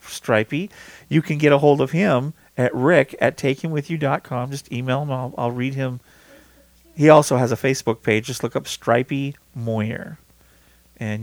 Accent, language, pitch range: American, English, 115-145 Hz